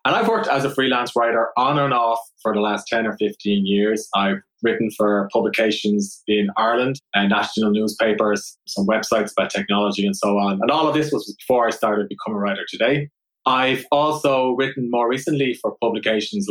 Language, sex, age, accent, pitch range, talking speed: English, male, 20-39, Irish, 110-145 Hz, 190 wpm